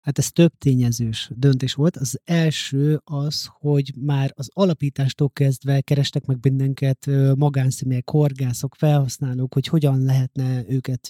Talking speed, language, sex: 130 wpm, Hungarian, male